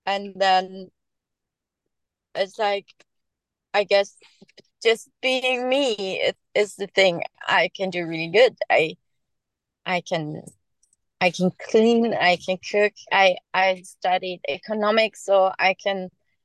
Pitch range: 195-240 Hz